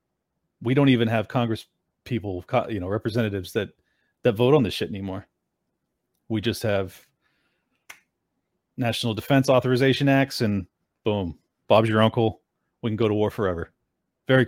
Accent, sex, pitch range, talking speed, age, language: American, male, 100-130 Hz, 145 wpm, 40-59, English